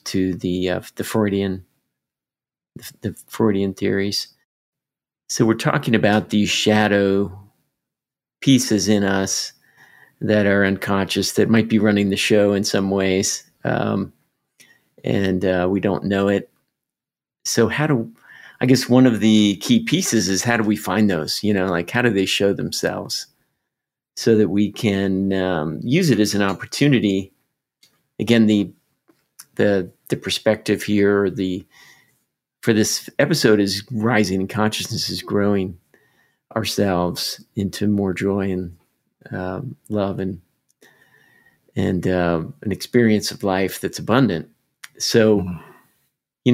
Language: English